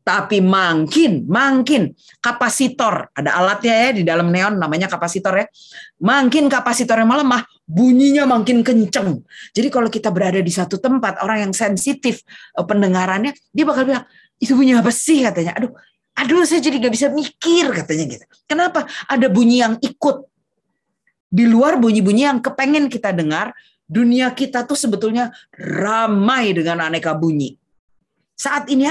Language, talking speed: Indonesian, 145 wpm